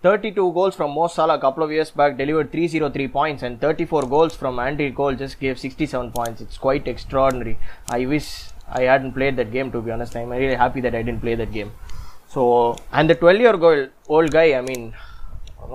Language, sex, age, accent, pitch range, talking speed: English, male, 20-39, Indian, 130-165 Hz, 200 wpm